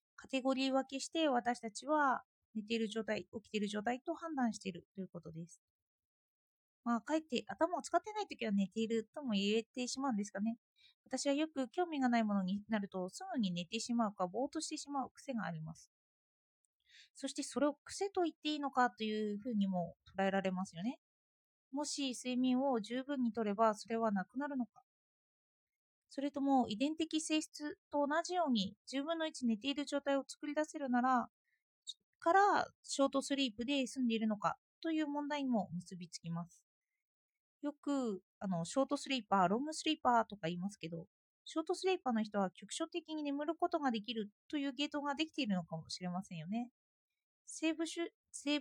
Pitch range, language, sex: 210-295 Hz, Japanese, female